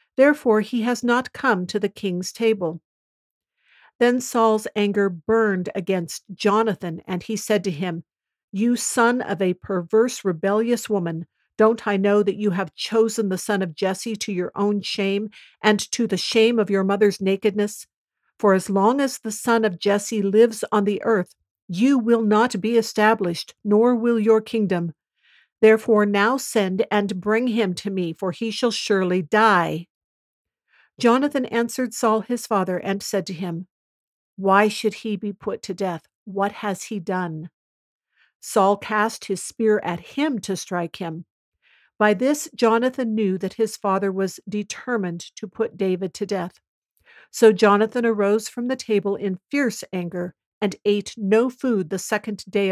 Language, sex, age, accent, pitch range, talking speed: English, female, 50-69, American, 190-225 Hz, 165 wpm